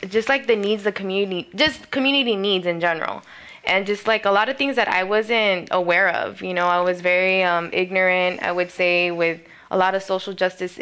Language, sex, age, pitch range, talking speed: English, female, 20-39, 180-220 Hz, 215 wpm